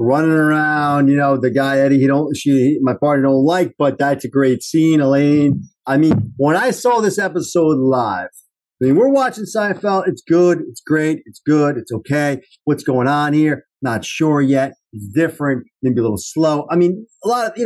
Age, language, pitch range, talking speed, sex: 40-59, English, 130-180 Hz, 205 wpm, male